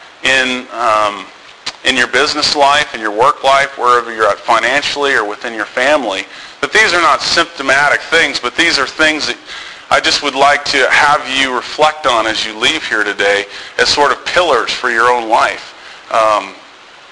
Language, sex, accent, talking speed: English, male, American, 180 wpm